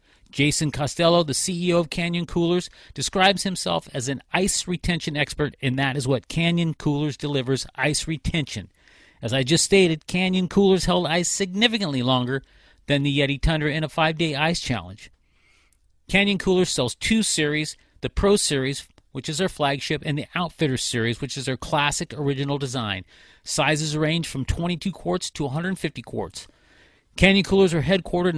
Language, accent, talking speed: English, American, 160 wpm